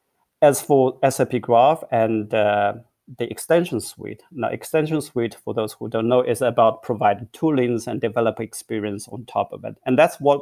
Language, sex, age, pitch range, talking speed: English, male, 30-49, 110-125 Hz, 180 wpm